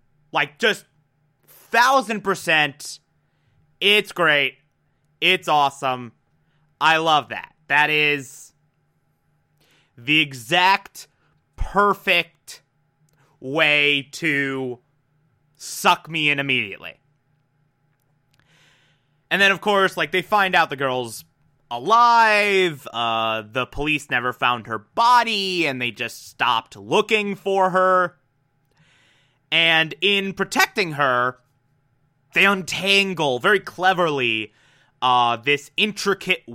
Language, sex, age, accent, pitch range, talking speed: English, male, 30-49, American, 135-170 Hz, 95 wpm